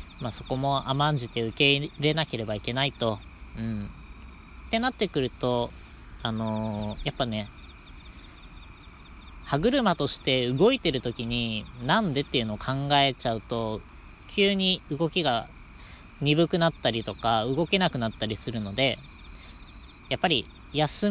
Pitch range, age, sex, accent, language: 105-150 Hz, 20-39, female, native, Japanese